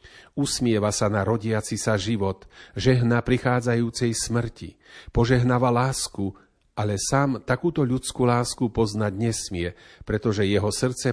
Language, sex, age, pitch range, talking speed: Slovak, male, 40-59, 100-125 Hz, 115 wpm